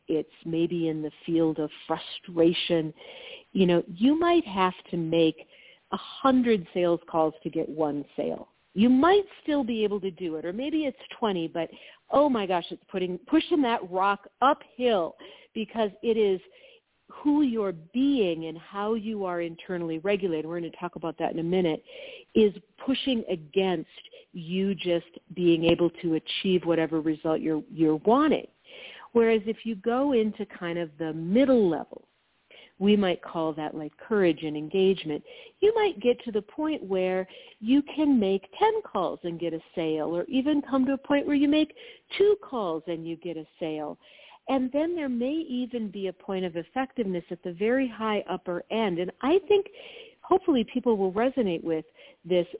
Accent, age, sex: American, 50-69, female